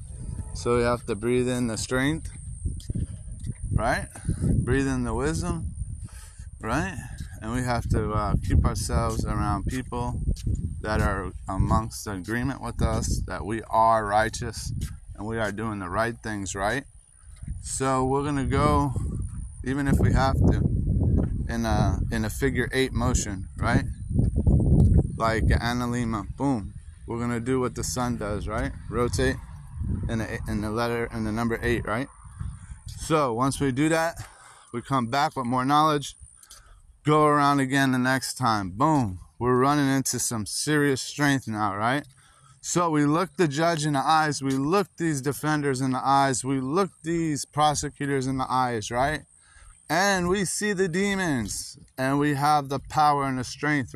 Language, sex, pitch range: English, male, 110-145 Hz